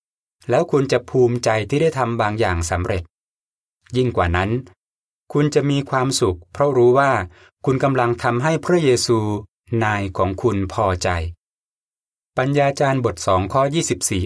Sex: male